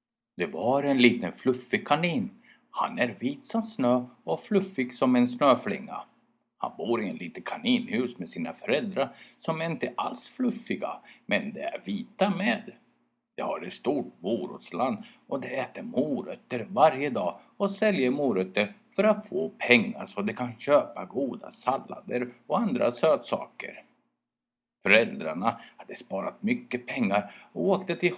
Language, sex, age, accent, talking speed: Swedish, male, 50-69, native, 145 wpm